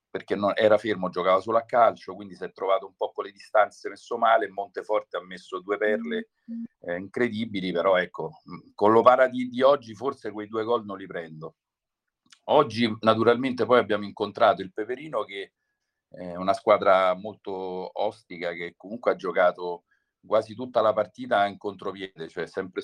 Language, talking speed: Italian, 175 wpm